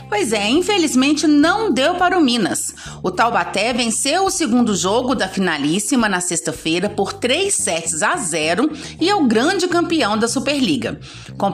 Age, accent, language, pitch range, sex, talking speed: 30-49, Brazilian, Portuguese, 195-300 Hz, female, 160 wpm